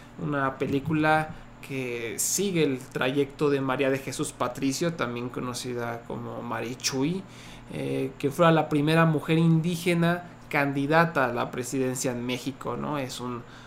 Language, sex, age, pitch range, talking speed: Spanish, male, 30-49, 135-165 Hz, 135 wpm